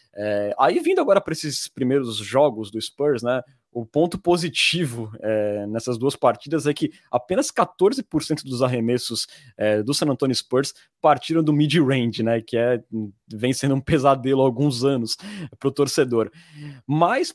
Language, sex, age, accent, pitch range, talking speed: Portuguese, male, 20-39, Brazilian, 125-170 Hz, 160 wpm